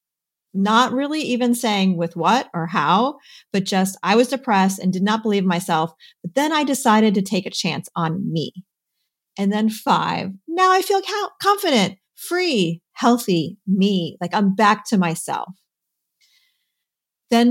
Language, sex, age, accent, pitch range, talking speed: English, female, 40-59, American, 185-255 Hz, 155 wpm